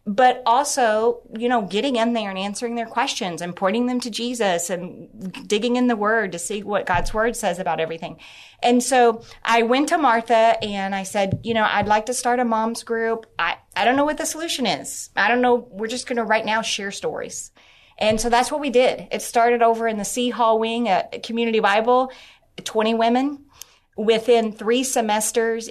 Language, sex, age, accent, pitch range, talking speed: English, female, 30-49, American, 200-240 Hz, 210 wpm